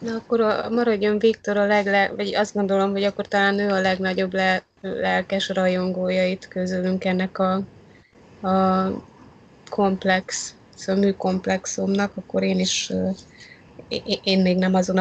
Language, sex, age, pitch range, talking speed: Hungarian, female, 20-39, 170-195 Hz, 135 wpm